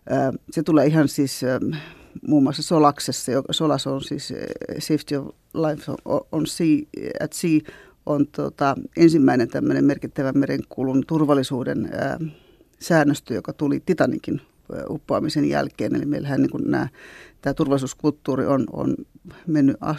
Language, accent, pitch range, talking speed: Finnish, native, 140-170 Hz, 110 wpm